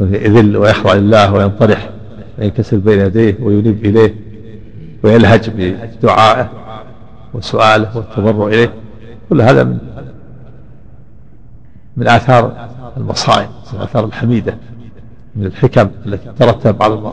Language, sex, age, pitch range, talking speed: Arabic, male, 50-69, 105-120 Hz, 100 wpm